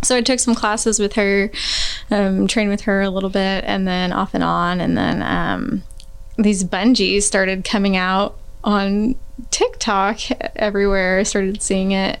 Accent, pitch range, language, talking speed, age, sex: American, 190-220 Hz, English, 165 wpm, 20-39, female